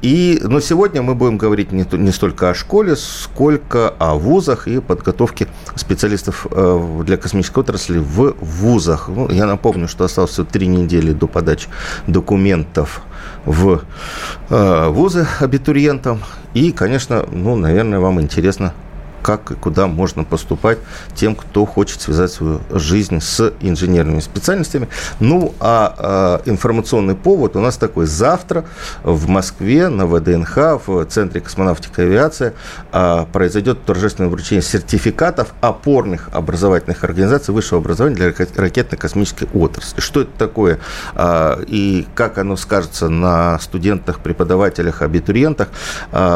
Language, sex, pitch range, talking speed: Russian, male, 85-110 Hz, 125 wpm